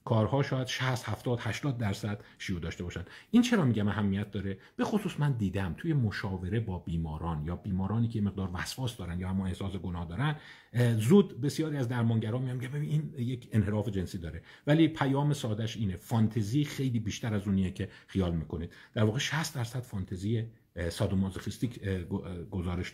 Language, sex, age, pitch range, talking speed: Persian, male, 50-69, 100-140 Hz, 165 wpm